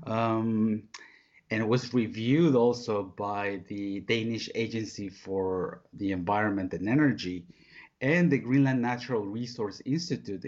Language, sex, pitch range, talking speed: Danish, male, 105-125 Hz, 120 wpm